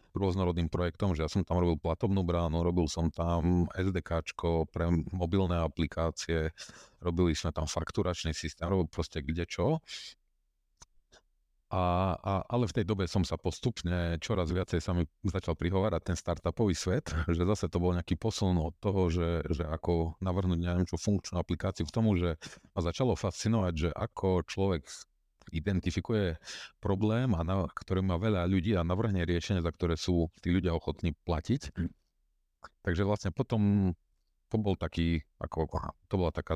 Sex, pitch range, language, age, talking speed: male, 85-95 Hz, Slovak, 40-59, 150 wpm